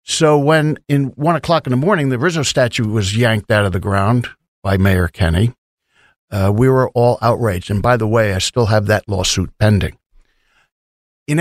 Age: 60-79